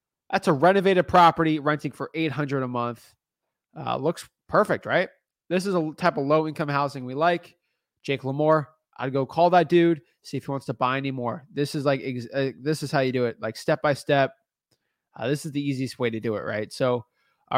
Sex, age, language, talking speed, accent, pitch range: male, 20-39, English, 215 wpm, American, 135-170 Hz